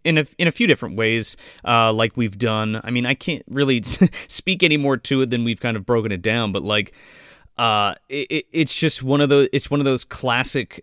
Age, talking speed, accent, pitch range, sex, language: 30-49, 235 wpm, American, 110-150 Hz, male, English